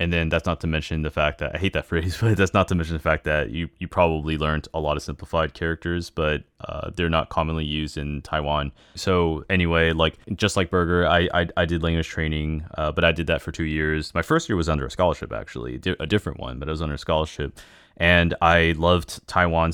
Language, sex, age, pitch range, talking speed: English, male, 20-39, 75-85 Hz, 240 wpm